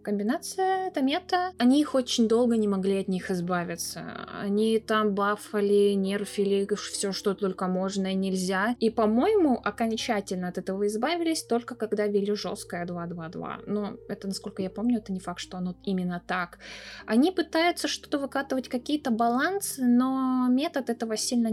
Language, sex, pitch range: Russian, female, 190-240 Hz